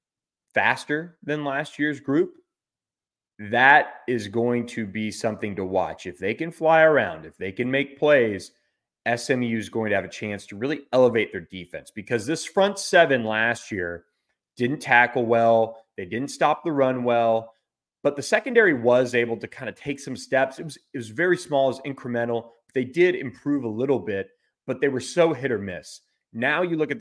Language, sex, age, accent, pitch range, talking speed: English, male, 30-49, American, 115-135 Hz, 190 wpm